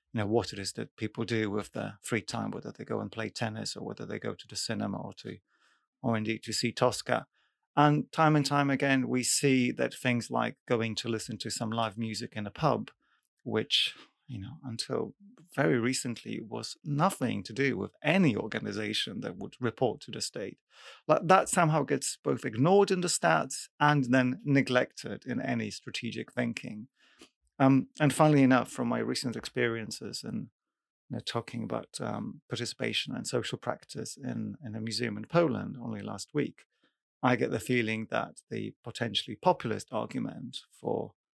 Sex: male